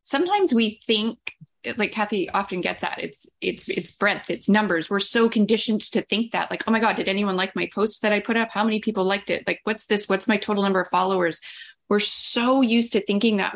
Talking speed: 235 wpm